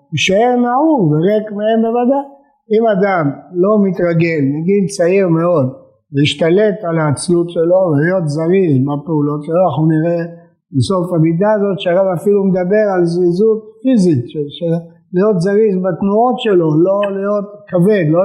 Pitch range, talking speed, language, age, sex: 155-210 Hz, 130 wpm, Hebrew, 50-69, male